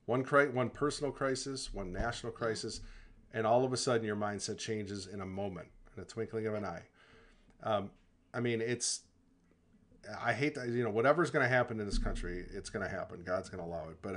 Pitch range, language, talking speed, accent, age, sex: 105-125 Hz, English, 215 wpm, American, 40-59, male